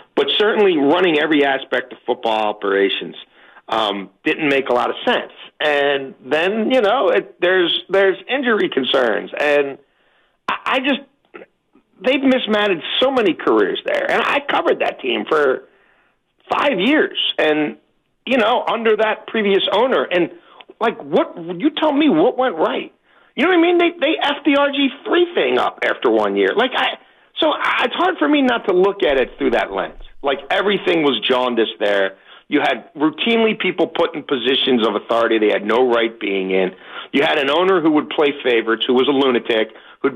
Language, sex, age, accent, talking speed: English, male, 50-69, American, 180 wpm